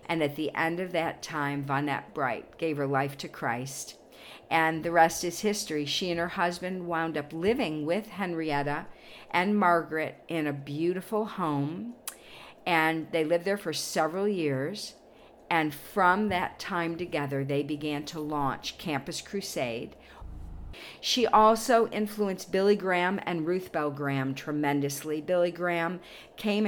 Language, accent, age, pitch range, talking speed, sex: English, American, 50-69, 145-190 Hz, 145 wpm, female